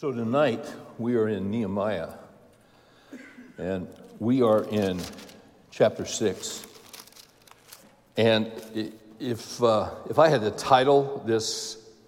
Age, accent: 60-79, American